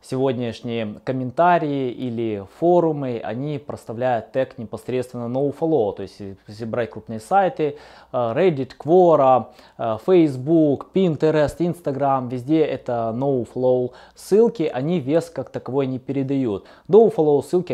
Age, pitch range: 20-39, 115-155 Hz